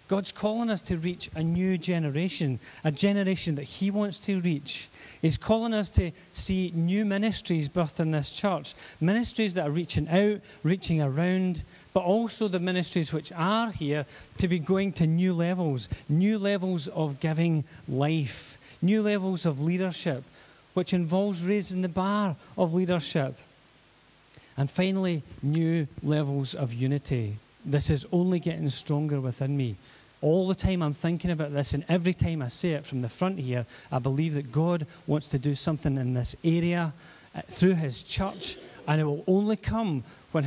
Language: English